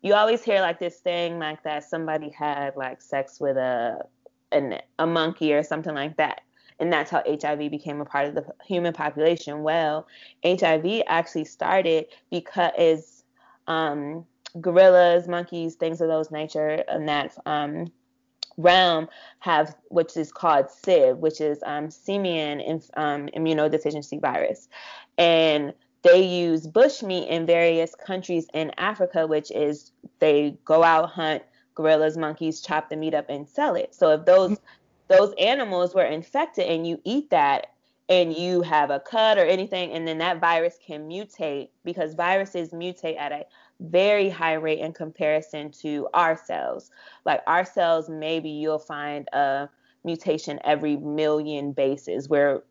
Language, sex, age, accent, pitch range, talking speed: English, female, 20-39, American, 150-175 Hz, 155 wpm